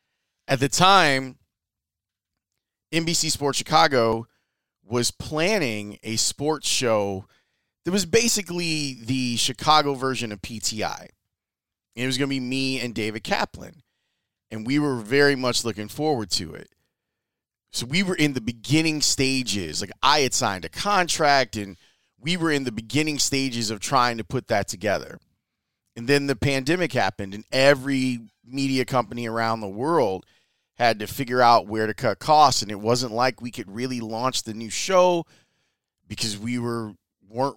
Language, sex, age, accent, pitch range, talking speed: English, male, 30-49, American, 110-145 Hz, 155 wpm